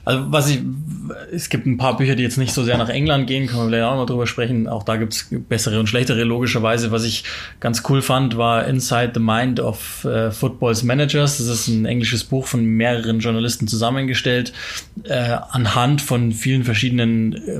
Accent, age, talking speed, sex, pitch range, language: German, 20-39, 190 wpm, male, 115-130 Hz, German